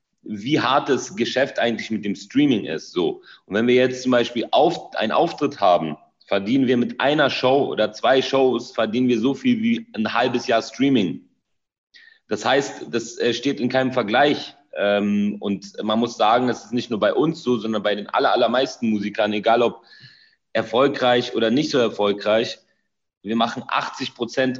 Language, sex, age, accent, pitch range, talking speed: German, male, 30-49, German, 100-125 Hz, 170 wpm